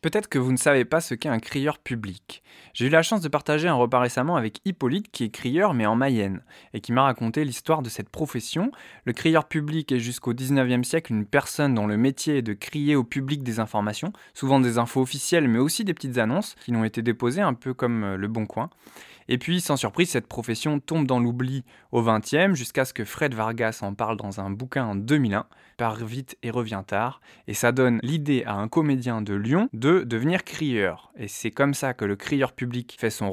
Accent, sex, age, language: French, male, 20-39, French